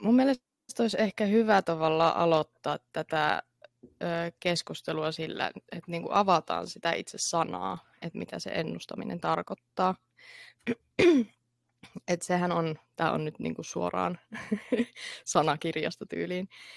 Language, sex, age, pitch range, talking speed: Finnish, female, 20-39, 150-205 Hz, 110 wpm